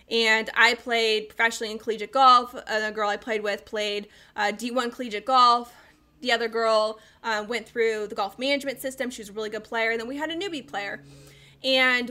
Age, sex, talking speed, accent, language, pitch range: 10-29, female, 210 wpm, American, English, 215-255 Hz